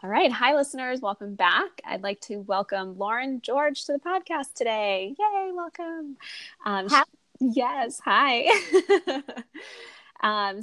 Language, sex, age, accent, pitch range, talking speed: English, female, 20-39, American, 185-250 Hz, 125 wpm